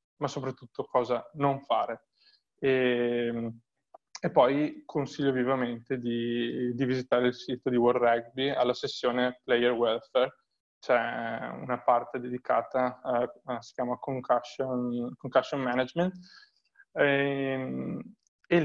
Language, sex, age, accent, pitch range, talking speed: Italian, male, 20-39, native, 125-135 Hz, 105 wpm